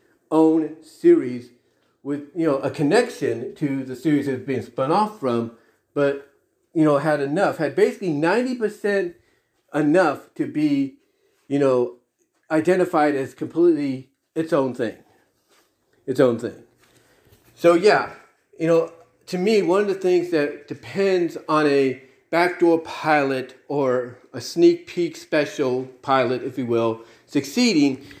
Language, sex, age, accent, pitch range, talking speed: English, male, 40-59, American, 135-200 Hz, 135 wpm